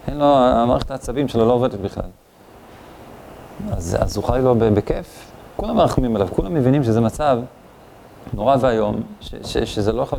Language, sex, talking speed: Hebrew, male, 165 wpm